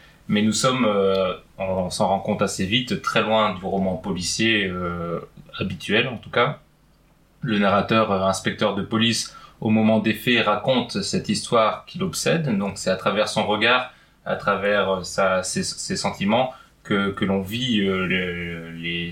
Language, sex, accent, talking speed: French, male, French, 170 wpm